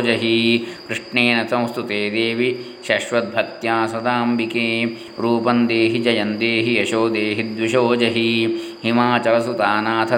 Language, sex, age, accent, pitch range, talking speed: Kannada, male, 20-39, native, 115-120 Hz, 65 wpm